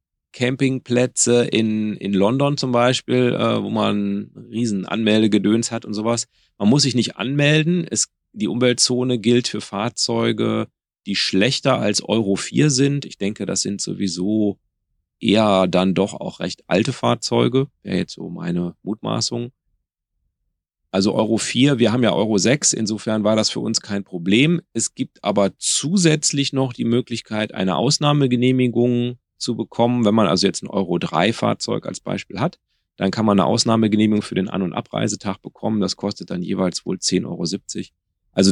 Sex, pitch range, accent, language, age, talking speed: male, 95-120 Hz, German, German, 40-59, 160 wpm